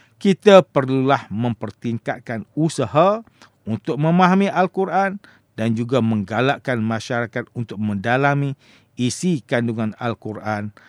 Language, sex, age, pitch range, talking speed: English, male, 50-69, 110-140 Hz, 90 wpm